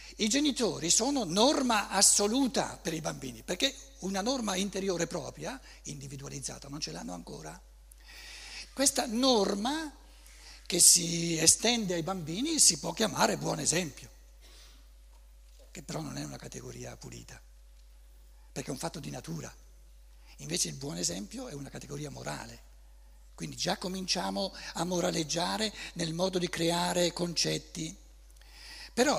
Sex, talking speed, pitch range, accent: male, 125 wpm, 140-235 Hz, native